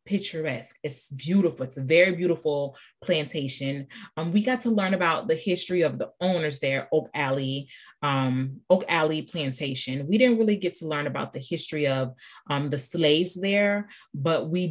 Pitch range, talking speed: 140-170 Hz, 170 wpm